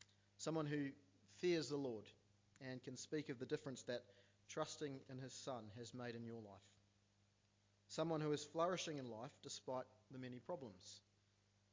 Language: English